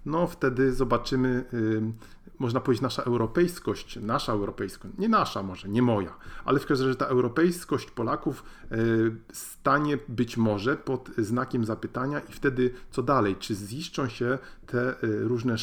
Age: 40-59